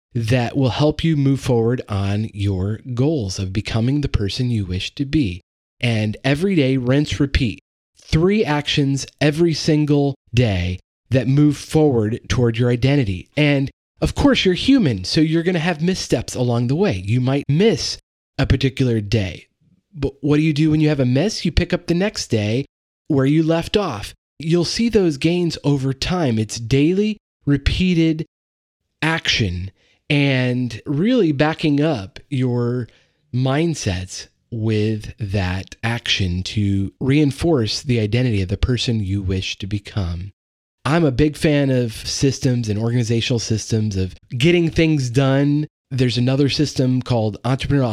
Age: 30-49